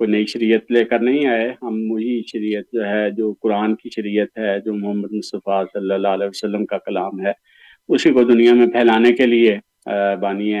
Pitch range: 110-130 Hz